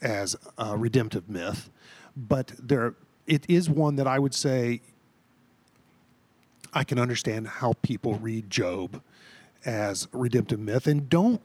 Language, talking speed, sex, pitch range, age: English, 135 wpm, male, 120-165 Hz, 40-59